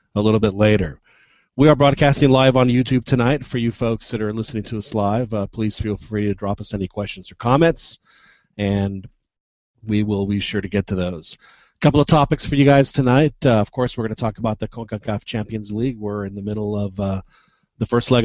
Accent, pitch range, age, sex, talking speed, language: American, 105-130 Hz, 40-59, male, 225 wpm, English